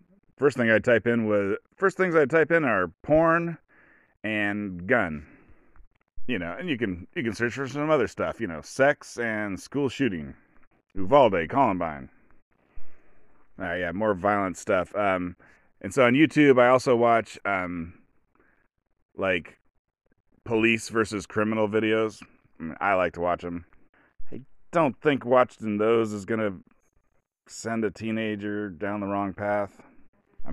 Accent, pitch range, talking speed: American, 100-125 Hz, 150 wpm